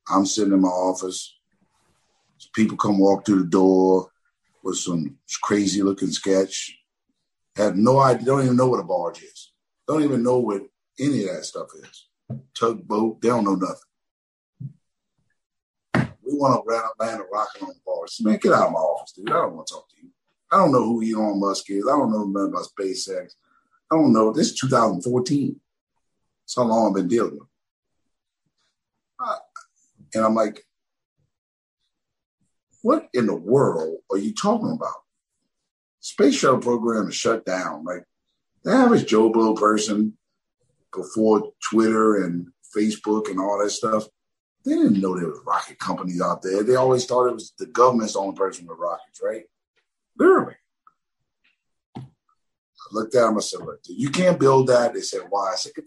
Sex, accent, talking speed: male, American, 175 wpm